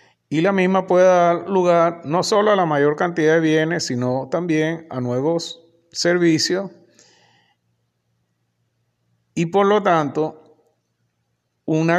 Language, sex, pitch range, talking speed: Spanish, male, 135-175 Hz, 120 wpm